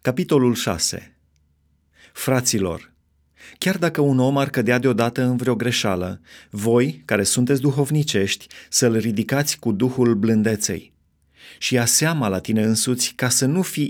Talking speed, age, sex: 140 wpm, 30-49, male